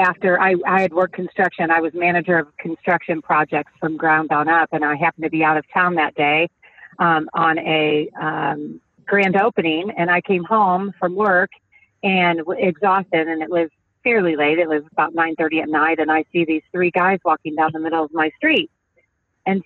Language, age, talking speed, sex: English, 40-59, 200 wpm, female